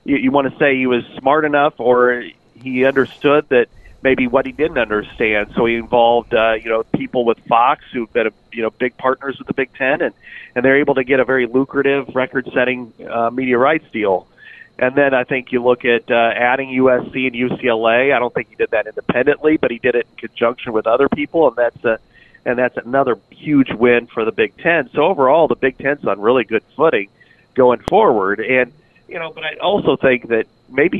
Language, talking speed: English, 215 wpm